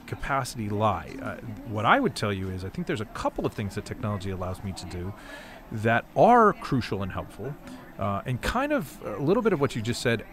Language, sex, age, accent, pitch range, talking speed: English, male, 40-59, American, 100-130 Hz, 225 wpm